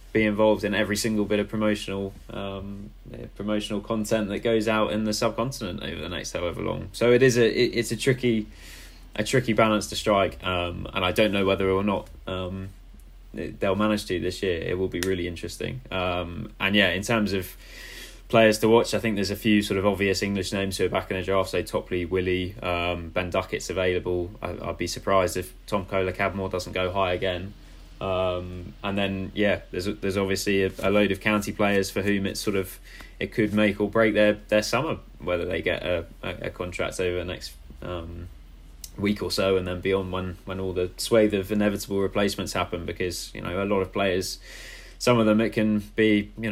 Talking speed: 210 wpm